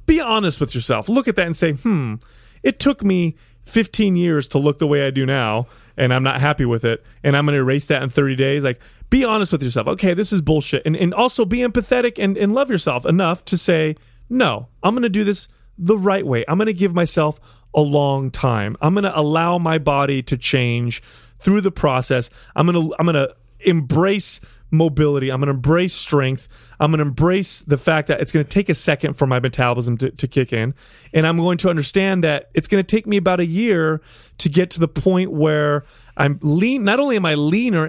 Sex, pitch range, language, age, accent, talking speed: male, 130-180 Hz, English, 30-49, American, 220 wpm